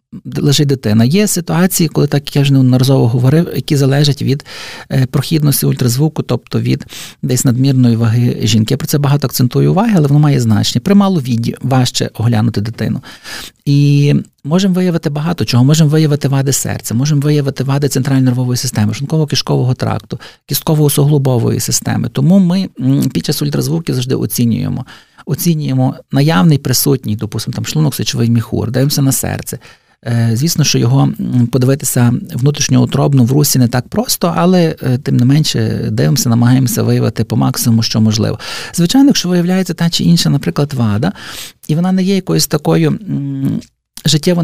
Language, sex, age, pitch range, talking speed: Ukrainian, male, 40-59, 125-160 Hz, 150 wpm